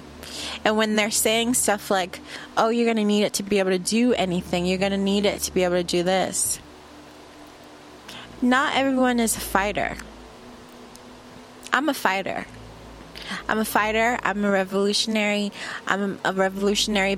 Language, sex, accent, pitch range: English, female, American, 180-210 Hz